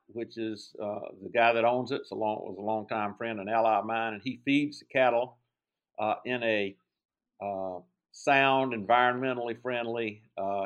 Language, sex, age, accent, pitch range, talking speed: English, male, 50-69, American, 110-130 Hz, 185 wpm